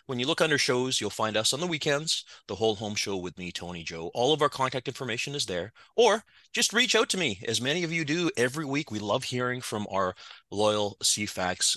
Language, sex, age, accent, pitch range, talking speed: English, male, 30-49, American, 110-180 Hz, 235 wpm